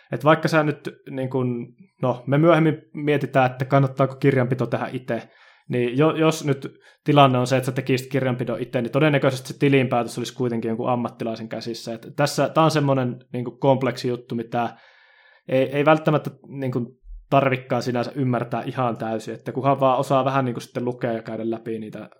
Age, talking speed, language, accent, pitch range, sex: 20-39, 175 wpm, Finnish, native, 120-145 Hz, male